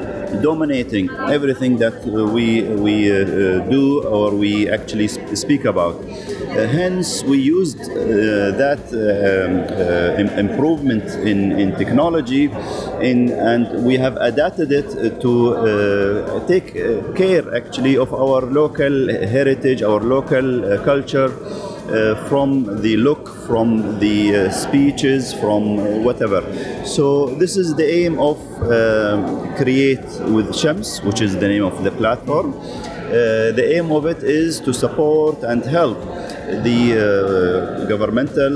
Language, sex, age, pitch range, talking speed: English, male, 40-59, 110-155 Hz, 130 wpm